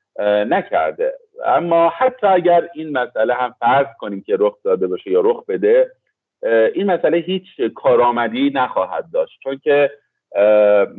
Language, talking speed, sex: Persian, 130 wpm, male